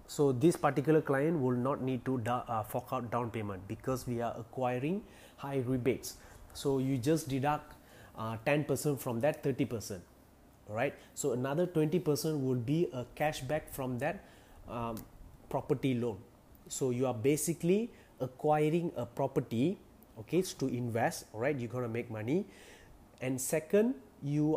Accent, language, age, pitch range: Indian, English, 30-49, 125-150 Hz